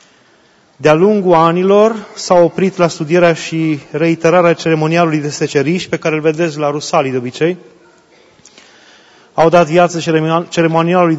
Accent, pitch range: native, 160-185 Hz